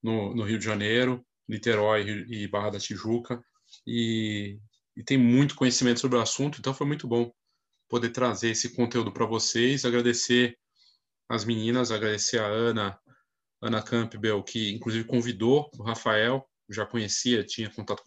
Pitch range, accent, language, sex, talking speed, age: 110-130 Hz, Brazilian, Portuguese, male, 150 wpm, 20-39